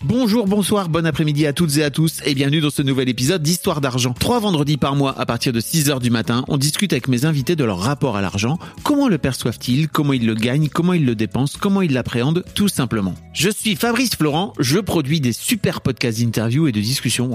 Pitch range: 120-170 Hz